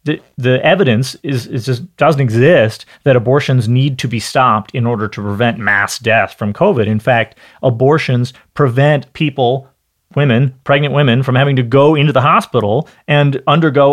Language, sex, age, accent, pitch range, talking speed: English, male, 30-49, American, 125-160 Hz, 170 wpm